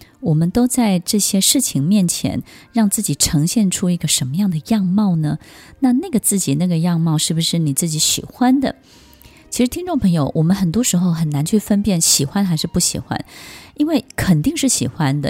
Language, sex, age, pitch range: Chinese, female, 20-39, 155-200 Hz